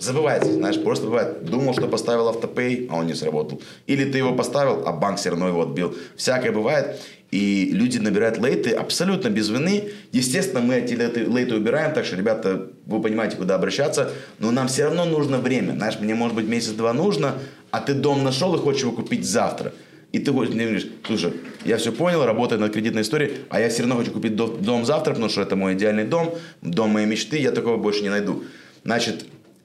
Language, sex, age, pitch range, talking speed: Russian, male, 20-39, 110-150 Hz, 200 wpm